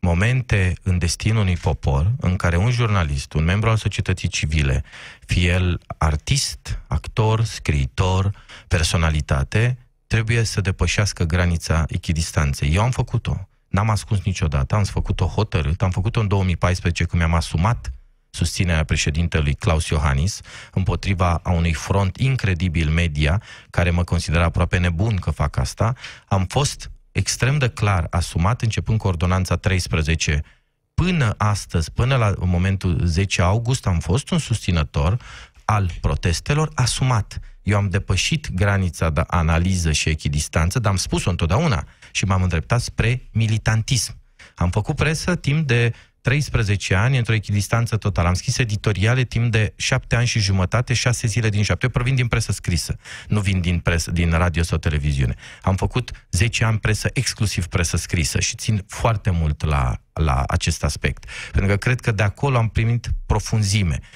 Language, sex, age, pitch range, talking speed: Romanian, male, 30-49, 85-115 Hz, 150 wpm